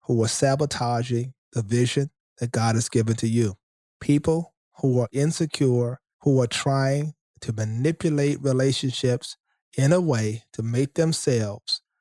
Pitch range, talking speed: 125-155 Hz, 135 wpm